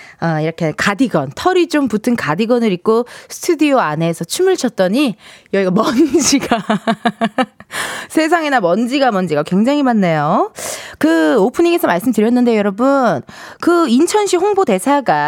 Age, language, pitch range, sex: 20-39, Korean, 185-295 Hz, female